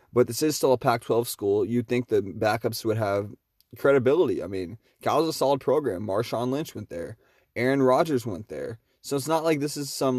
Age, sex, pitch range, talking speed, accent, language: 20-39, male, 110-135 Hz, 205 wpm, American, English